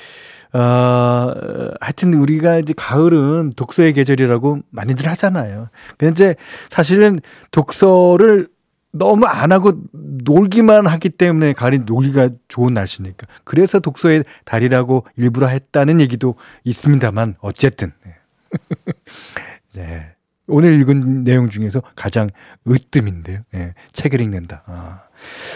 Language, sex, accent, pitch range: Korean, male, native, 115-160 Hz